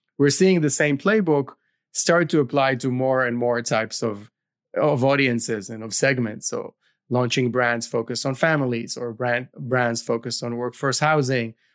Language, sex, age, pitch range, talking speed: English, male, 30-49, 120-150 Hz, 165 wpm